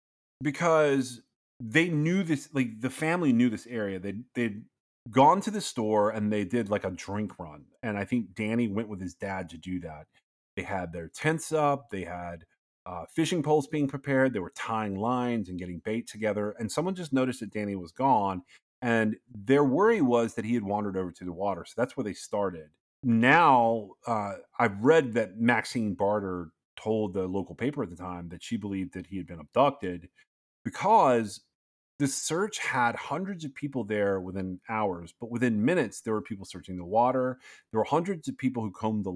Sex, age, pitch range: male, 30-49, 95-130 Hz